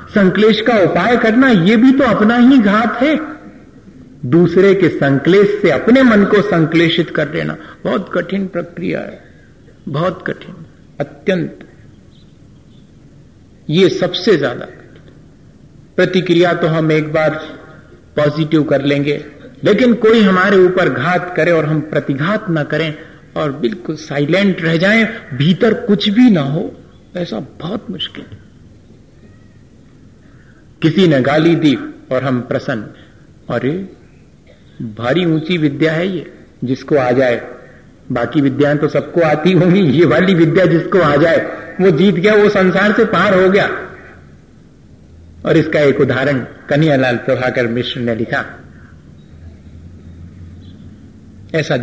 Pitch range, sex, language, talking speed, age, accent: 135-185 Hz, male, Hindi, 125 wpm, 50-69, native